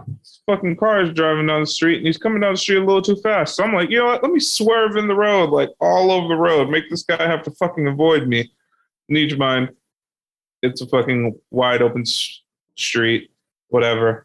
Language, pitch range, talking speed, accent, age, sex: English, 125-195 Hz, 225 wpm, American, 20-39, male